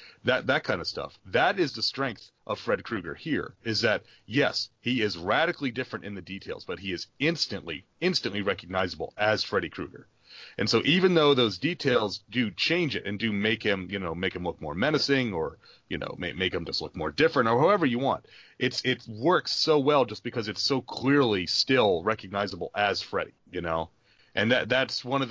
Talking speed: 205 wpm